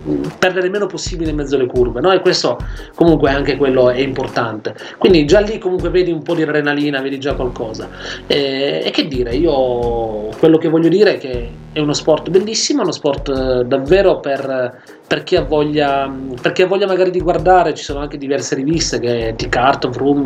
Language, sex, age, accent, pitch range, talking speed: Italian, male, 30-49, native, 130-185 Hz, 195 wpm